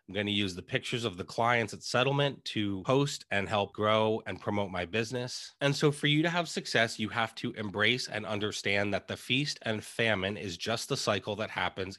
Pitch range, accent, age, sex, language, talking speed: 100-125 Hz, American, 30-49, male, English, 220 wpm